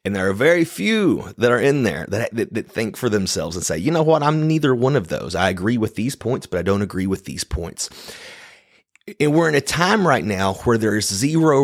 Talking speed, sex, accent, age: 245 wpm, male, American, 30-49